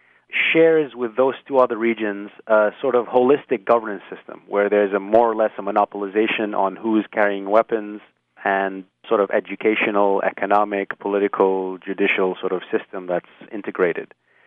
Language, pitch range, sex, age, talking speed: English, 100-120 Hz, male, 30-49, 150 wpm